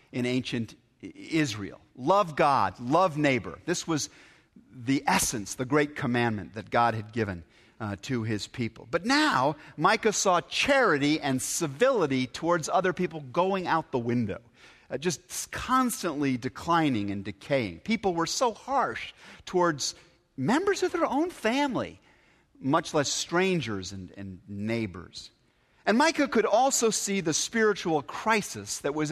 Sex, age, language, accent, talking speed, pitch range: male, 50-69, English, American, 140 wpm, 115-180 Hz